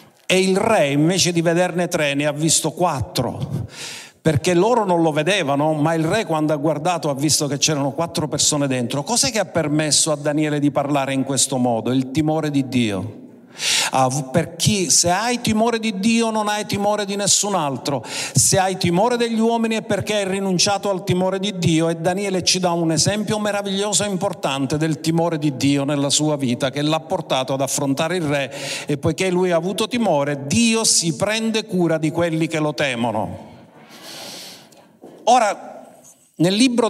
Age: 50-69